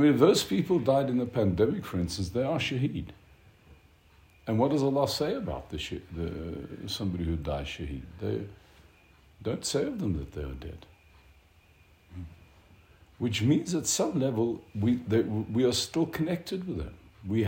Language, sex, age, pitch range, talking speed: English, male, 60-79, 85-130 Hz, 170 wpm